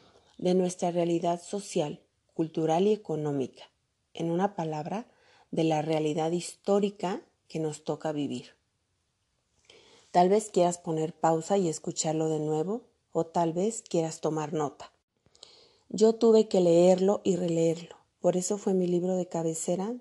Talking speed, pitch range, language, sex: 140 wpm, 170-205 Hz, Spanish, female